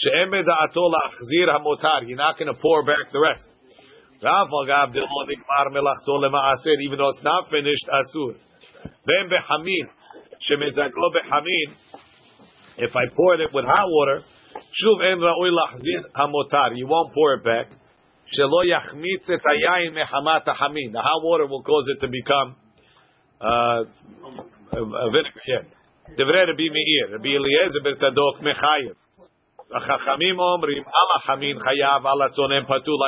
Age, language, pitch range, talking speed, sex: 50-69, English, 140-180 Hz, 80 wpm, male